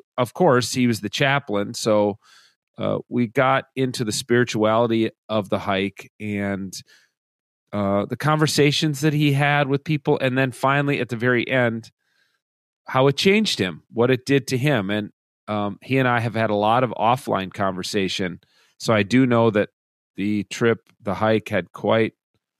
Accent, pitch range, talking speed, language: American, 105-130 Hz, 170 wpm, English